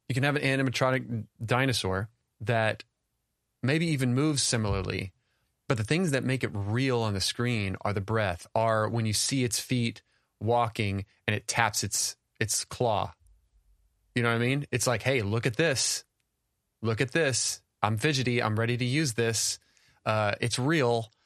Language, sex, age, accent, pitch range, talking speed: English, male, 30-49, American, 110-130 Hz, 170 wpm